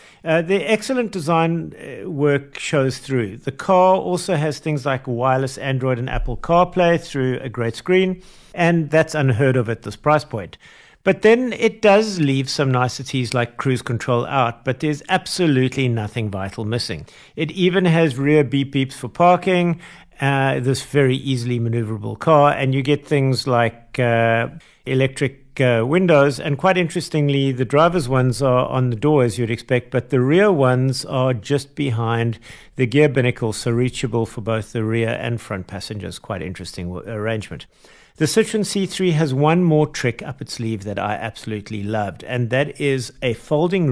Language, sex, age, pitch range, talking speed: English, male, 50-69, 120-165 Hz, 170 wpm